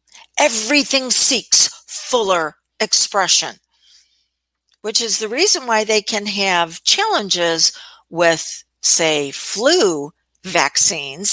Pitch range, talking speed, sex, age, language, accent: 170-235 Hz, 90 wpm, female, 60-79, English, American